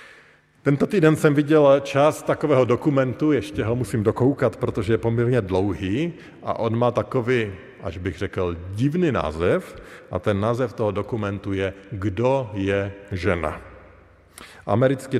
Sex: male